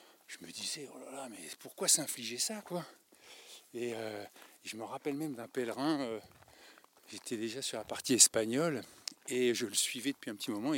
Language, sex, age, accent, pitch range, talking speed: French, male, 60-79, French, 110-160 Hz, 190 wpm